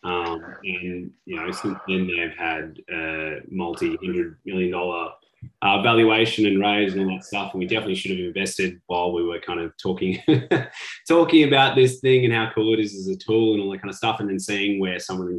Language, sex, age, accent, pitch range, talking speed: English, male, 20-39, Australian, 95-115 Hz, 215 wpm